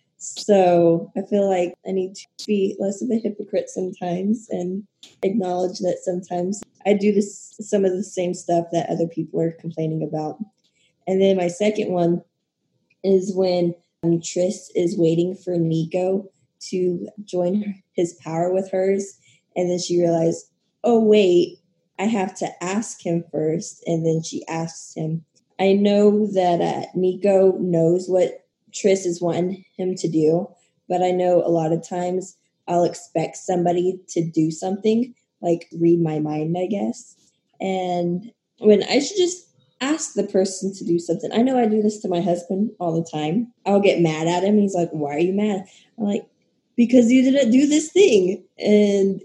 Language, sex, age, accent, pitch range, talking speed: English, female, 20-39, American, 170-210 Hz, 170 wpm